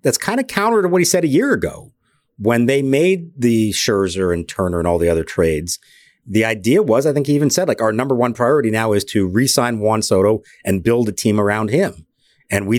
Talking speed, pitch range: 235 wpm, 100-125 Hz